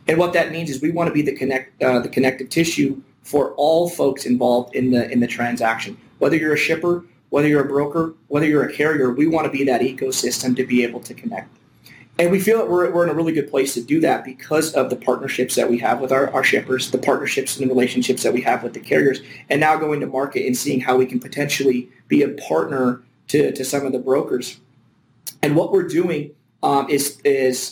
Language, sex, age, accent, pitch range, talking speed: English, male, 30-49, American, 125-150 Hz, 235 wpm